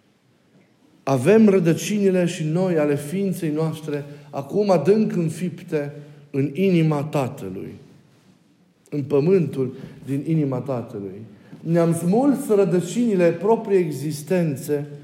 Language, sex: Romanian, male